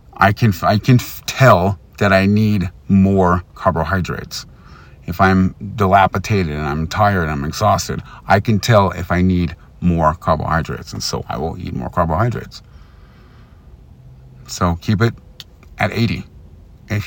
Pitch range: 90-115 Hz